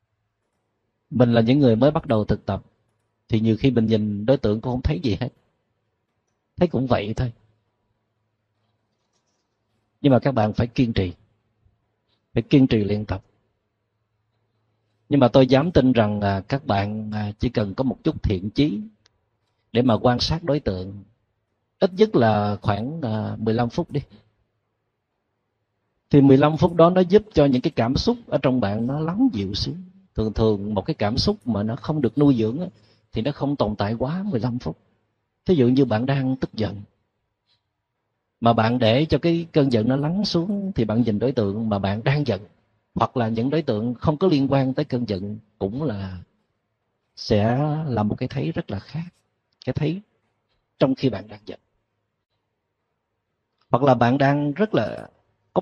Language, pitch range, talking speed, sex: Vietnamese, 105-135 Hz, 180 wpm, male